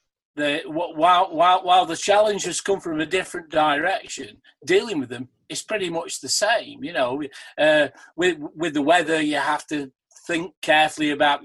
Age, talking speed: 40-59, 170 wpm